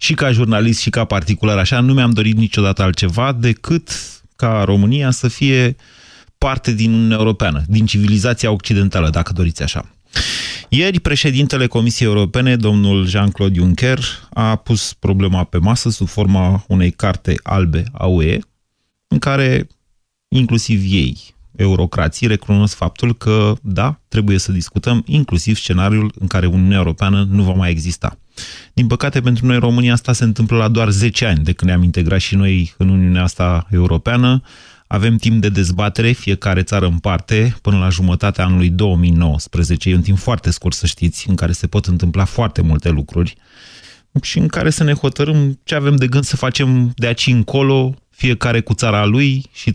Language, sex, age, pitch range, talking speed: Romanian, male, 30-49, 95-120 Hz, 165 wpm